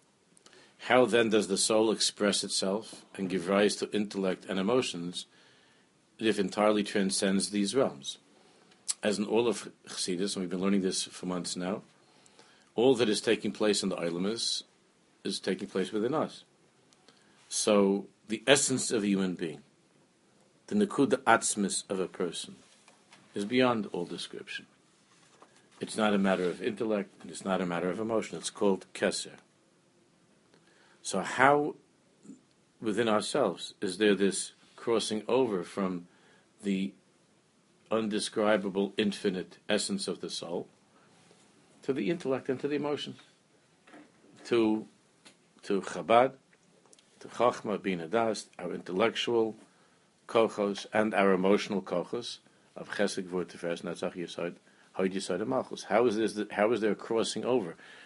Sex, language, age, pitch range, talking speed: male, English, 50-69, 95-110 Hz, 140 wpm